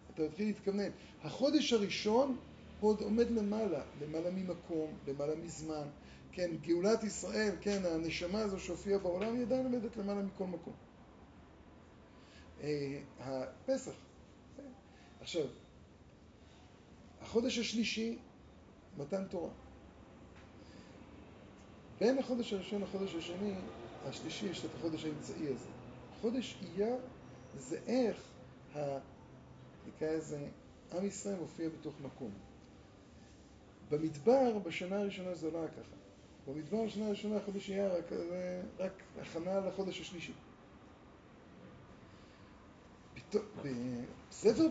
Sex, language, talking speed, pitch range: male, Hebrew, 90 wpm, 150-205 Hz